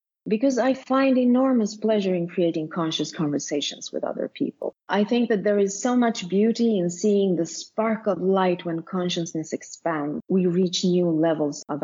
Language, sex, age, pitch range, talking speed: English, female, 40-59, 155-200 Hz, 170 wpm